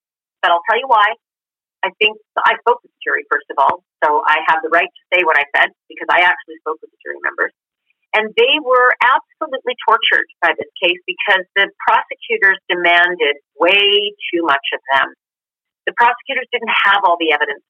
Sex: female